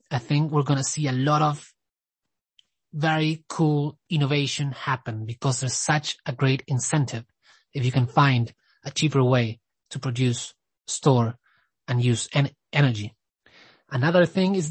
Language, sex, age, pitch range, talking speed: English, male, 30-49, 130-160 Hz, 145 wpm